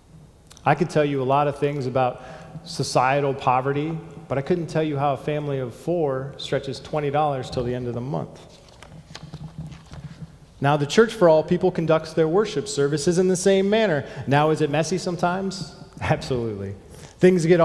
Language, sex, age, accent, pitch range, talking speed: English, male, 30-49, American, 130-165 Hz, 175 wpm